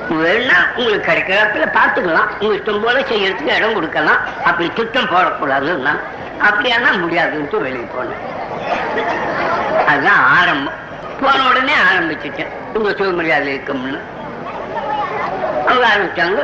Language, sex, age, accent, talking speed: Tamil, female, 60-79, native, 45 wpm